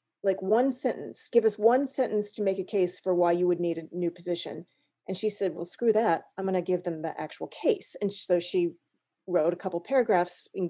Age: 30-49